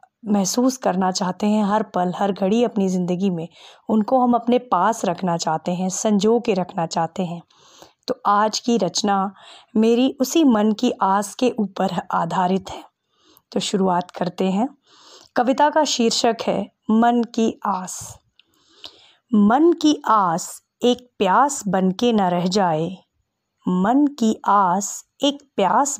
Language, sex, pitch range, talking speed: Hindi, female, 185-245 Hz, 140 wpm